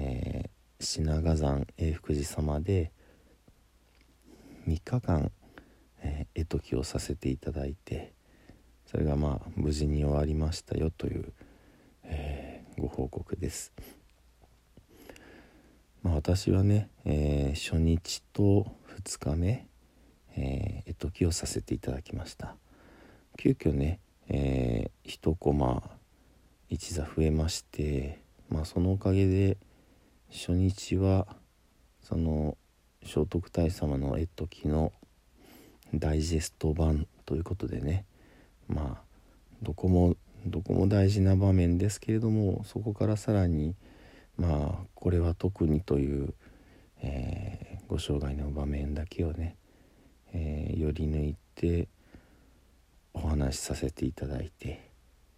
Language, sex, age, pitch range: Japanese, male, 50-69, 75-95 Hz